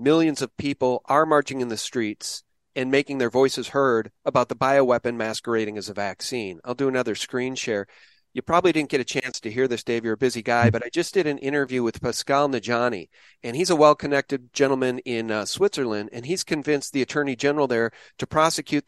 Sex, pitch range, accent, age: male, 125-155 Hz, American, 40-59